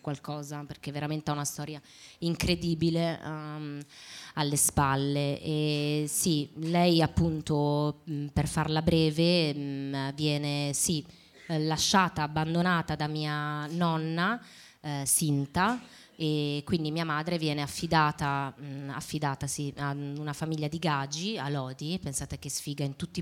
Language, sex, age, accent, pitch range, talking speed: Italian, female, 20-39, native, 140-160 Hz, 130 wpm